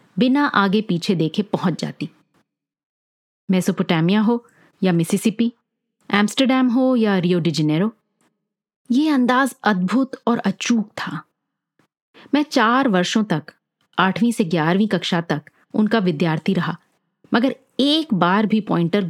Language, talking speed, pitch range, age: Hindi, 120 wpm, 180-240 Hz, 30-49